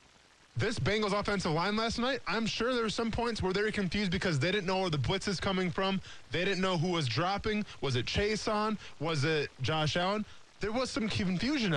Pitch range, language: 140-200 Hz, English